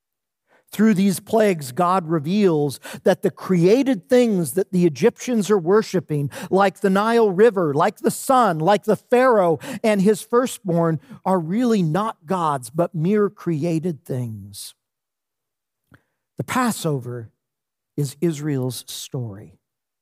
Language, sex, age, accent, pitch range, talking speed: English, male, 50-69, American, 155-230 Hz, 120 wpm